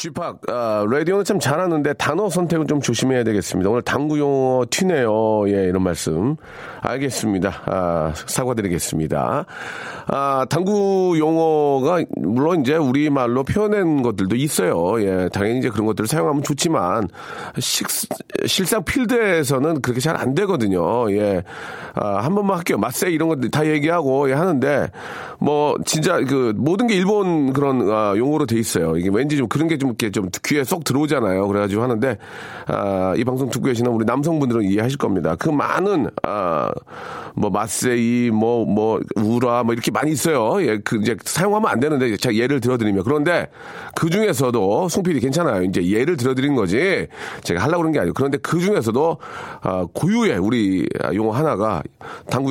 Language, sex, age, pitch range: Korean, male, 40-59, 110-160 Hz